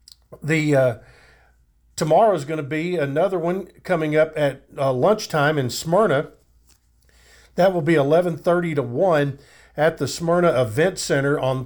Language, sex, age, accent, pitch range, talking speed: English, male, 50-69, American, 135-170 Hz, 150 wpm